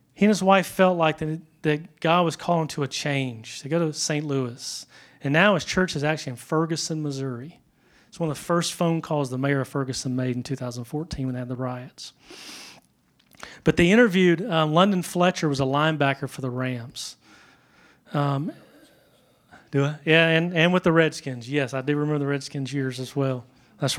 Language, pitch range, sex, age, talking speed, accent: English, 135-175 Hz, male, 30-49, 195 wpm, American